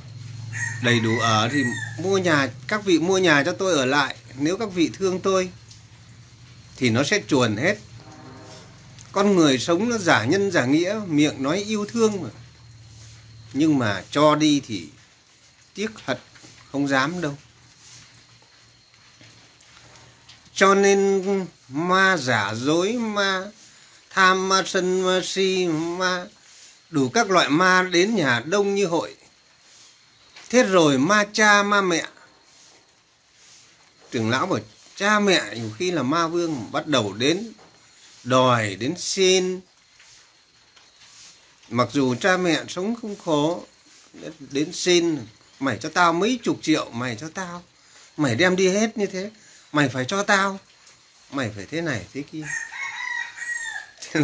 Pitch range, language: 125-190 Hz, Vietnamese